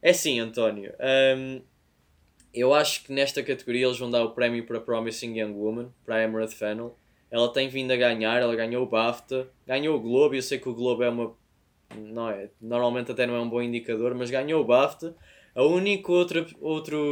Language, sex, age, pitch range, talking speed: Portuguese, male, 20-39, 120-145 Hz, 200 wpm